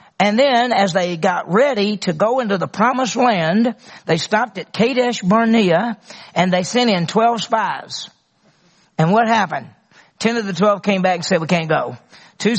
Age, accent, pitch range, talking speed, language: 40-59, American, 175-225 Hz, 180 wpm, English